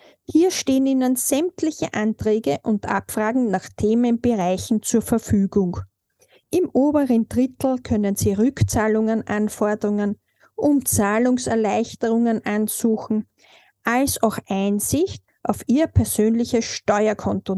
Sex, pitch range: female, 210-265 Hz